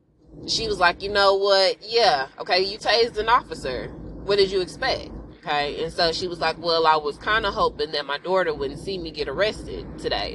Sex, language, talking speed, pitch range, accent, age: female, English, 215 wpm, 155-195 Hz, American, 20-39